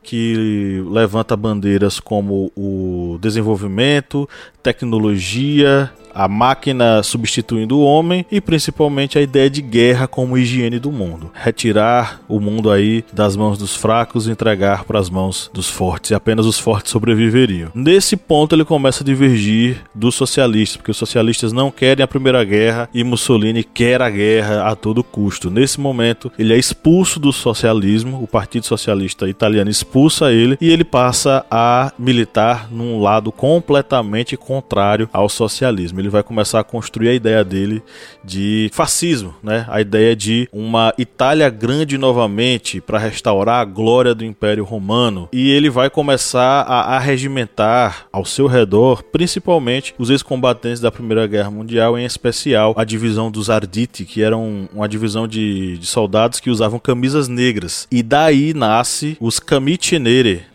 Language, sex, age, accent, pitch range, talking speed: Portuguese, male, 20-39, Brazilian, 110-130 Hz, 155 wpm